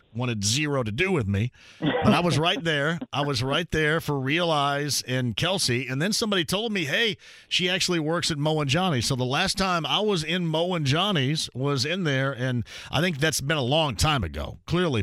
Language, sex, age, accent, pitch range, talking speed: English, male, 40-59, American, 125-160 Hz, 220 wpm